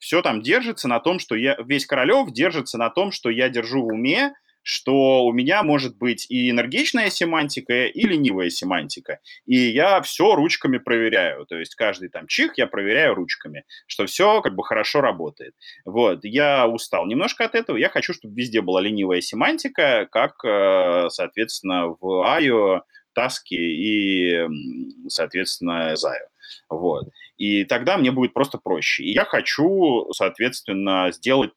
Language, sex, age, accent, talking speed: Russian, male, 30-49, native, 150 wpm